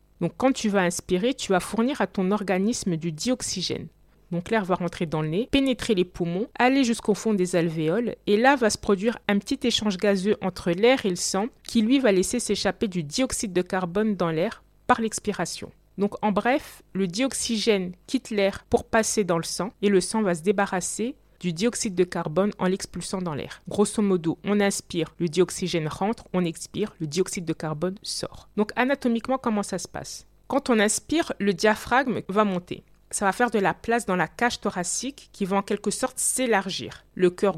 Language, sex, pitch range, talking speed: French, female, 180-235 Hz, 200 wpm